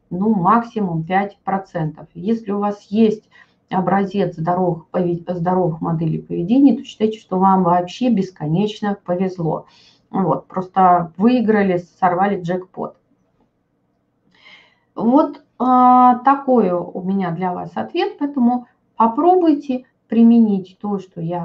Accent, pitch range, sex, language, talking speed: native, 175-245 Hz, female, Russian, 110 wpm